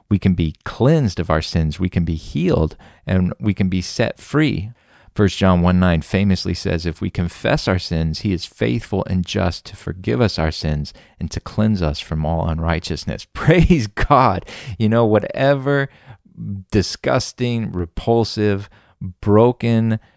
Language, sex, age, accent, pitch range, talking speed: English, male, 40-59, American, 90-110 Hz, 155 wpm